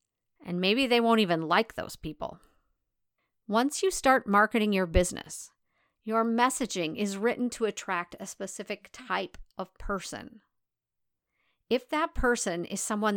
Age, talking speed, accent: 50-69, 135 wpm, American